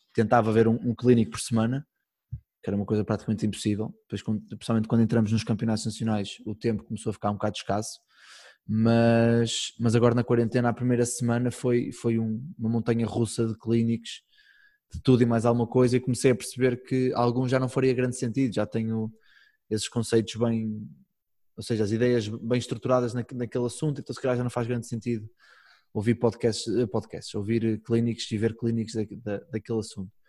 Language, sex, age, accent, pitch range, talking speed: Portuguese, male, 20-39, Portuguese, 110-120 Hz, 180 wpm